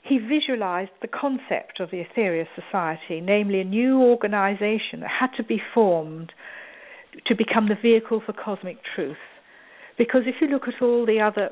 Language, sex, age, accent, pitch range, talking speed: English, female, 60-79, British, 185-220 Hz, 165 wpm